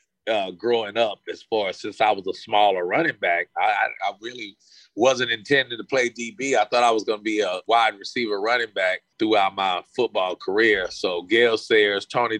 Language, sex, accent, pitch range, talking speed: English, male, American, 110-145 Hz, 200 wpm